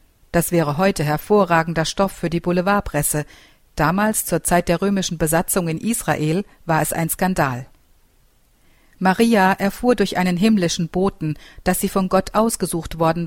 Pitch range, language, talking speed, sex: 155-200 Hz, German, 145 wpm, female